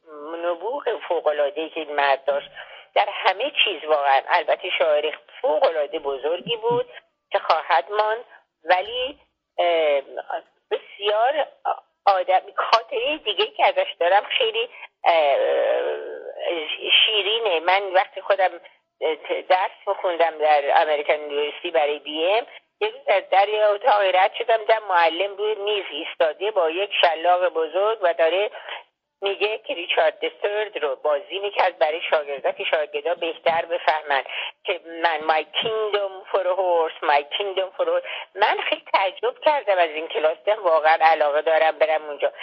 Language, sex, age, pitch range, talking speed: Persian, female, 50-69, 155-225 Hz, 125 wpm